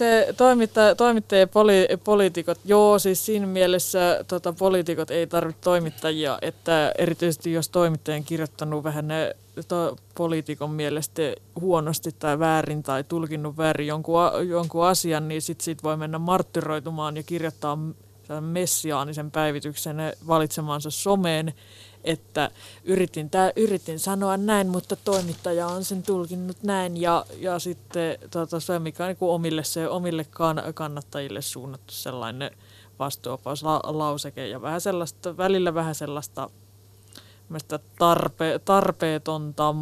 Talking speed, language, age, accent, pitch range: 120 wpm, Finnish, 20-39, native, 150-175 Hz